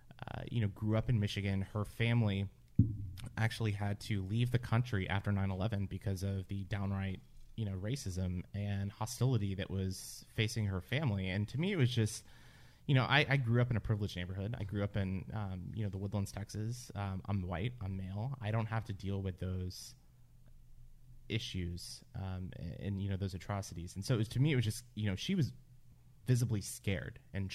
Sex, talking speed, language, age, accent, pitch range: male, 205 wpm, English, 30-49, American, 95-120 Hz